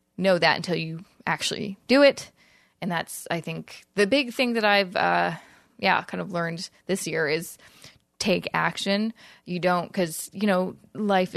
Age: 20-39